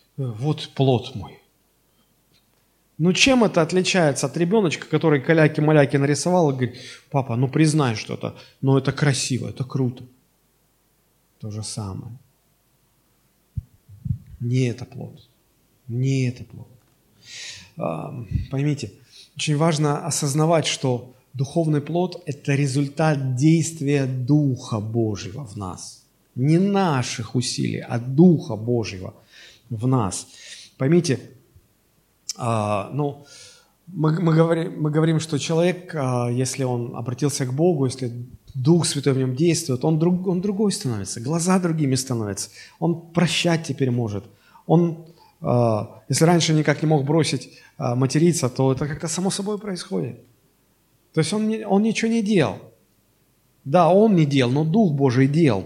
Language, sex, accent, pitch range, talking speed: Russian, male, native, 125-160 Hz, 120 wpm